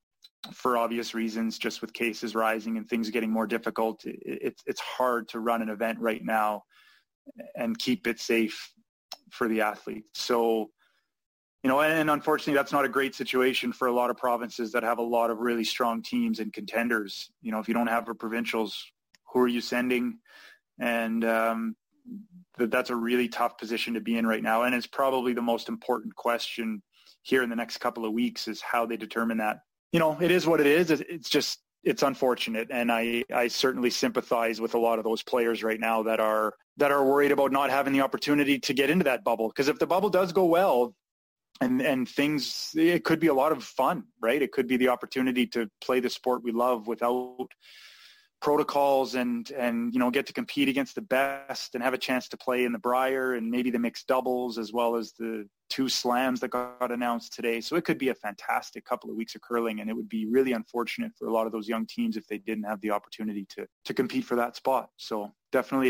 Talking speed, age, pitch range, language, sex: 215 wpm, 20-39, 115-130 Hz, English, male